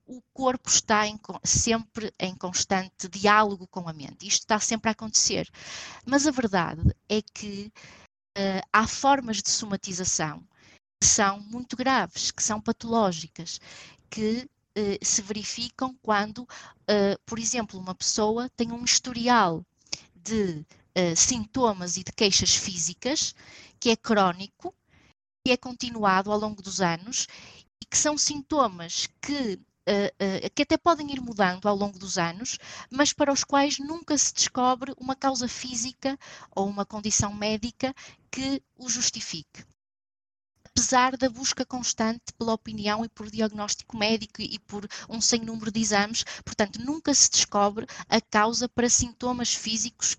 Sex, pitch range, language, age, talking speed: female, 200-250 Hz, Portuguese, 20-39, 135 wpm